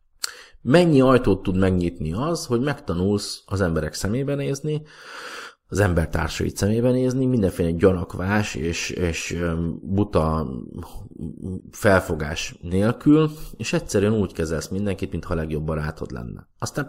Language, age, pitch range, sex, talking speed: Hungarian, 30-49, 80-100 Hz, male, 115 wpm